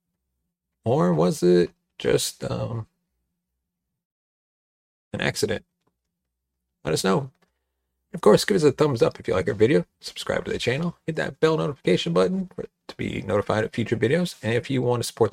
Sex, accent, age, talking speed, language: male, American, 40-59, 170 wpm, English